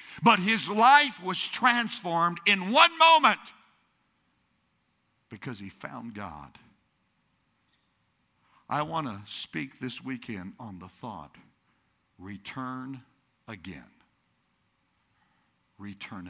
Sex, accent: male, American